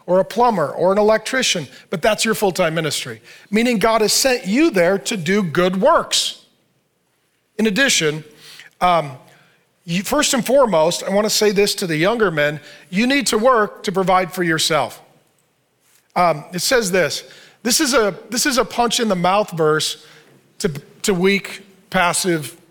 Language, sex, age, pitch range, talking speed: English, male, 40-59, 180-260 Hz, 165 wpm